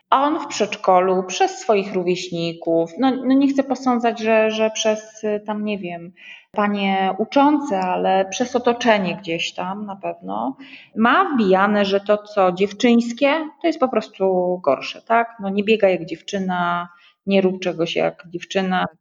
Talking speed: 155 wpm